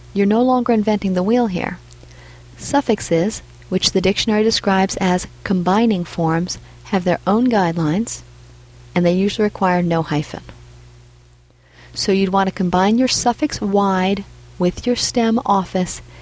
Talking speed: 135 wpm